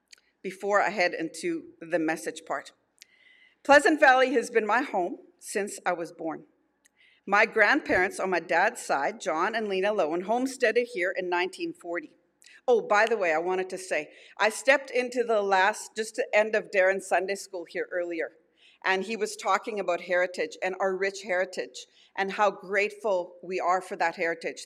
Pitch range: 185-265 Hz